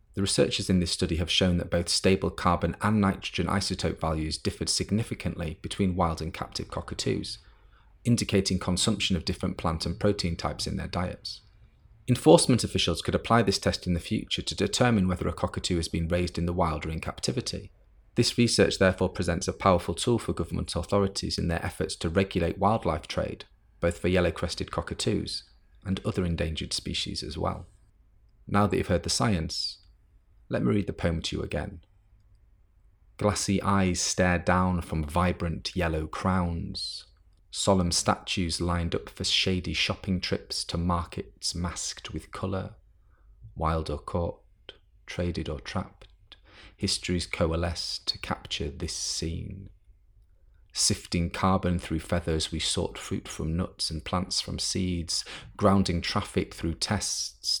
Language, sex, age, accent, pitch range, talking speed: English, male, 30-49, British, 85-100 Hz, 155 wpm